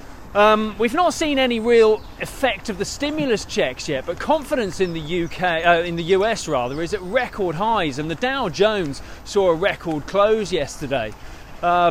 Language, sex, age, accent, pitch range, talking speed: English, male, 20-39, British, 155-200 Hz, 180 wpm